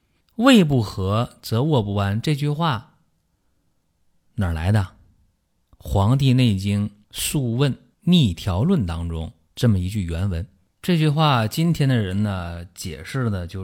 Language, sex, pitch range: Chinese, male, 90-115 Hz